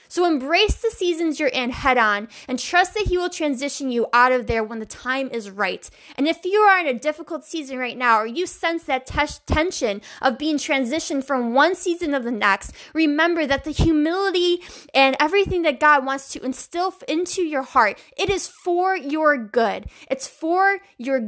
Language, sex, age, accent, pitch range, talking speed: English, female, 20-39, American, 250-335 Hz, 195 wpm